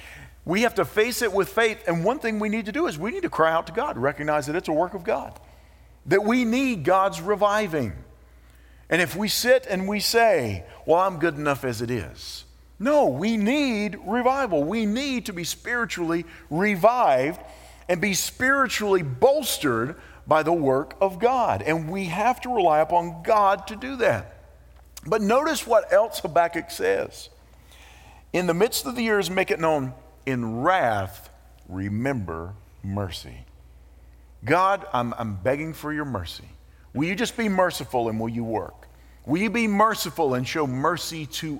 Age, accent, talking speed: 50-69, American, 175 wpm